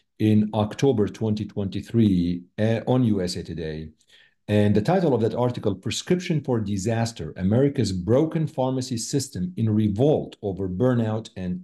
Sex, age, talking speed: male, 50-69, 130 wpm